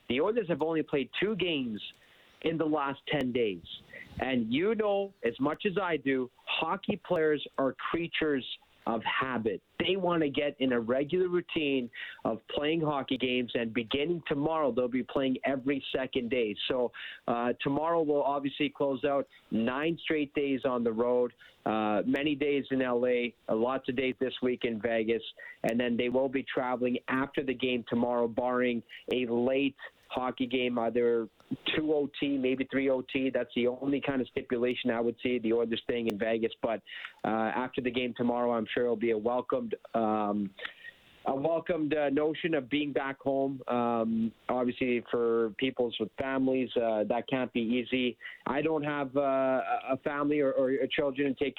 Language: English